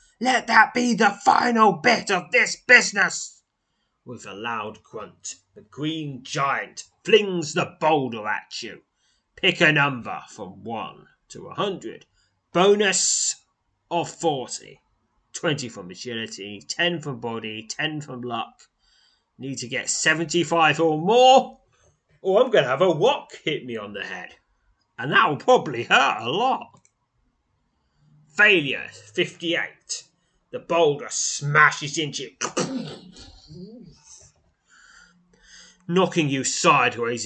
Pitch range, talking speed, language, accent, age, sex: 120-195 Hz, 120 wpm, English, British, 30-49, male